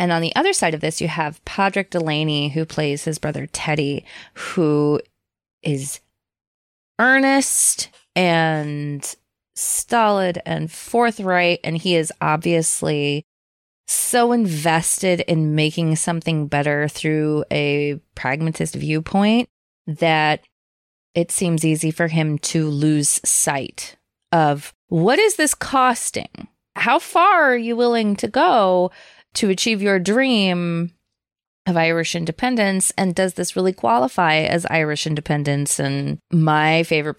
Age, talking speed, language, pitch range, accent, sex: 20-39, 125 wpm, English, 145-175 Hz, American, female